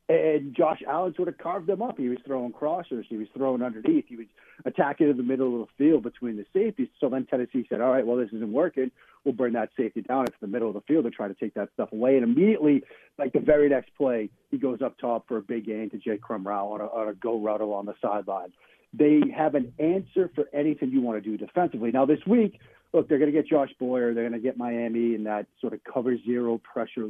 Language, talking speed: English, 260 wpm